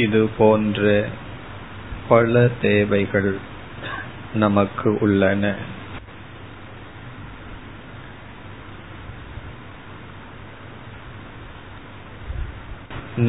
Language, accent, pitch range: Tamil, native, 100-115 Hz